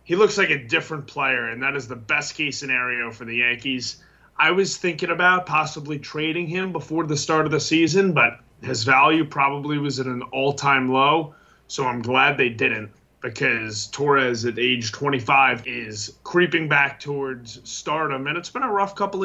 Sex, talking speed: male, 180 wpm